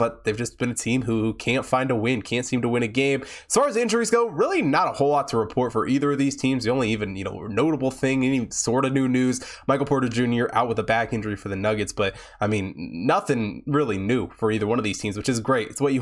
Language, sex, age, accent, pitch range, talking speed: English, male, 20-39, American, 115-140 Hz, 280 wpm